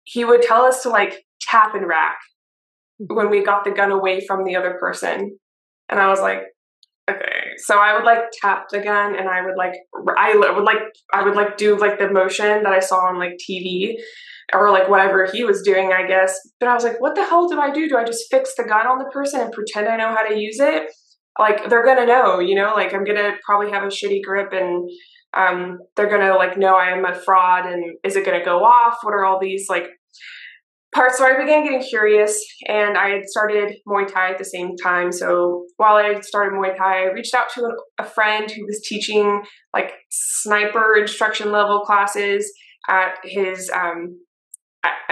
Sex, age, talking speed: female, 20-39, 220 wpm